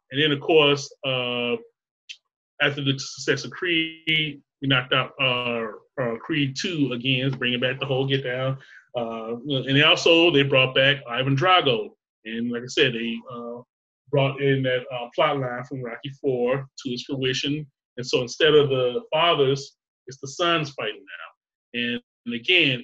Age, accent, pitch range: 20-39, American, 125-145 Hz